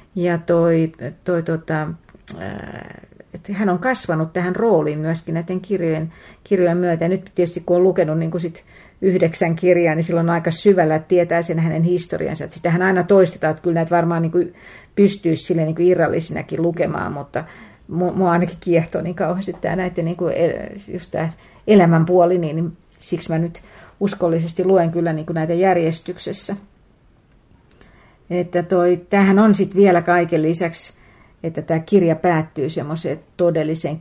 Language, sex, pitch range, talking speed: Finnish, female, 165-190 Hz, 145 wpm